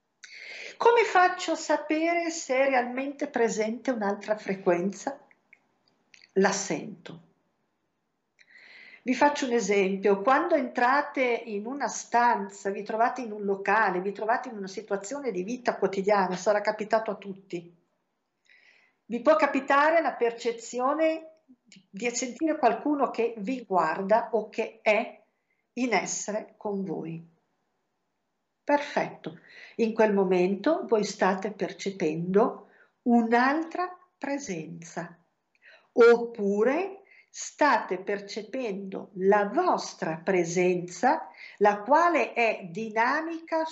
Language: Italian